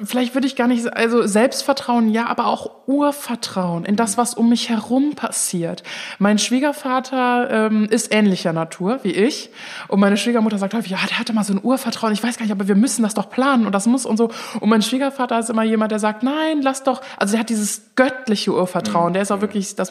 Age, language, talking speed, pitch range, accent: 20-39, German, 230 wpm, 205-240 Hz, German